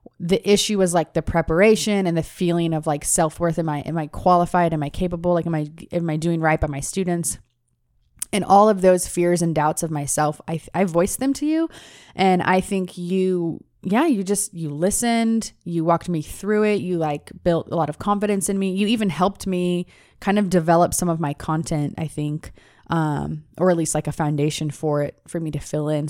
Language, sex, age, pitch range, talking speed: English, female, 20-39, 155-190 Hz, 220 wpm